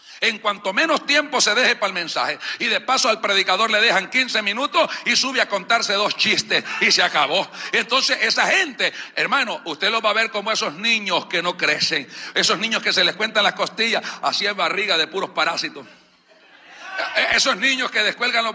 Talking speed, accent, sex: 195 wpm, American, male